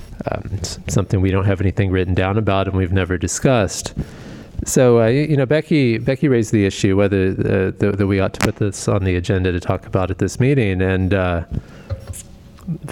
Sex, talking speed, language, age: male, 195 wpm, English, 30-49